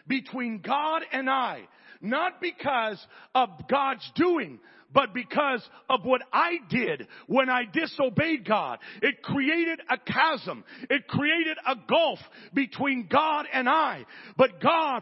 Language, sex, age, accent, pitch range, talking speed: English, male, 50-69, American, 245-310 Hz, 130 wpm